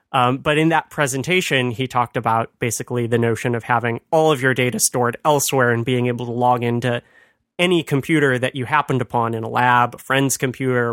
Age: 30-49